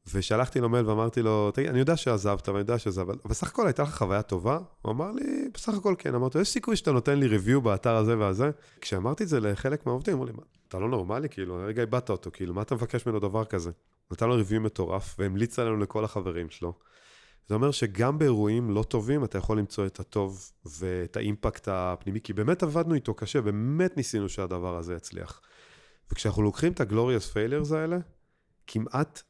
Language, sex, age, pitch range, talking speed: Hebrew, male, 30-49, 105-140 Hz, 170 wpm